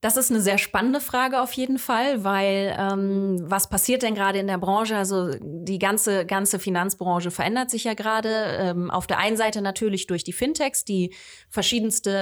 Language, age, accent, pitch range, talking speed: German, 20-39, German, 180-205 Hz, 185 wpm